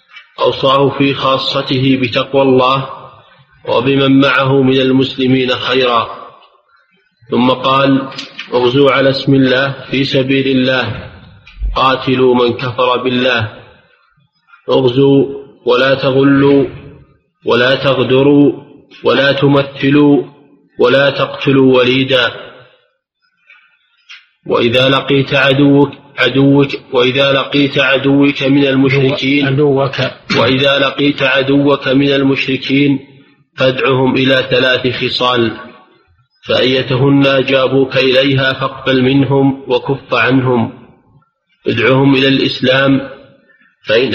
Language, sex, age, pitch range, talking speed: Arabic, male, 30-49, 130-140 Hz, 85 wpm